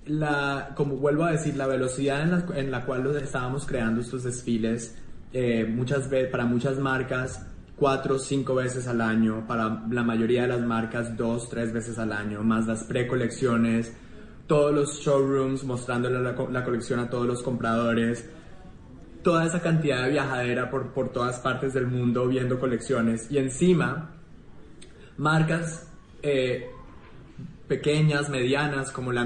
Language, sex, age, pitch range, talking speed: Spanish, male, 20-39, 125-155 Hz, 155 wpm